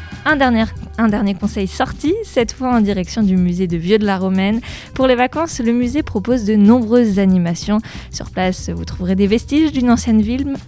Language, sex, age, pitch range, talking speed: French, female, 20-39, 200-250 Hz, 180 wpm